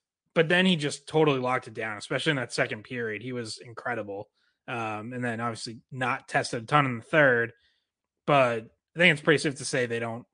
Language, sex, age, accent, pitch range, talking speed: English, male, 20-39, American, 125-165 Hz, 215 wpm